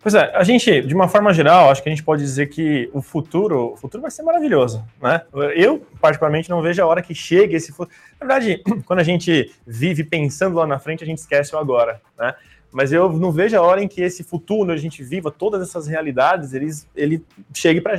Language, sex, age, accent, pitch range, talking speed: Portuguese, male, 20-39, Brazilian, 145-190 Hz, 235 wpm